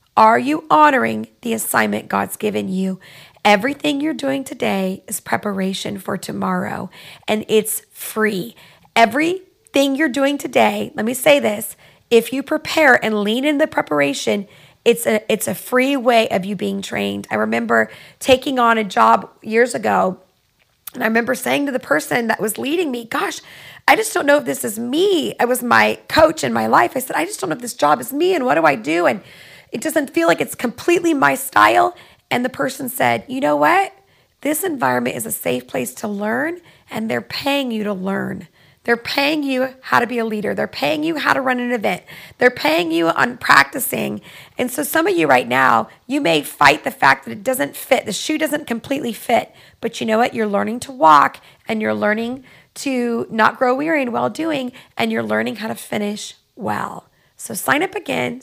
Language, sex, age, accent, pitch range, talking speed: English, female, 40-59, American, 195-280 Hz, 200 wpm